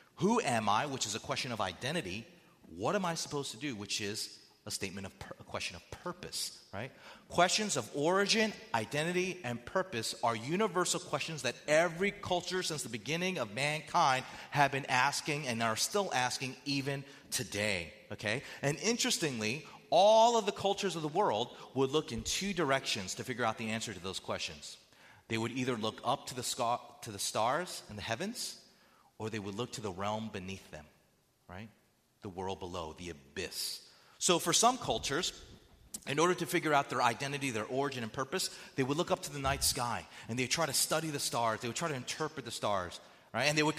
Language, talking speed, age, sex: English, 195 wpm, 30-49, male